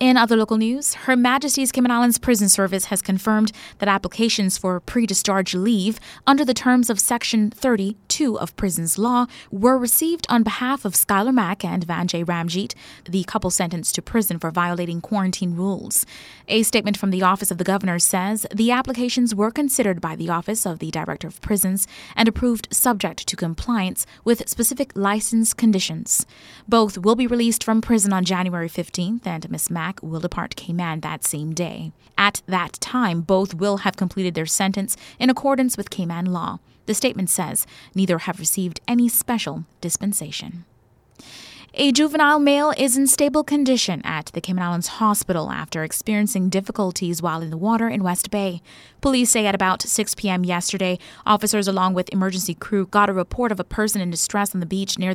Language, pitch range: English, 180-225 Hz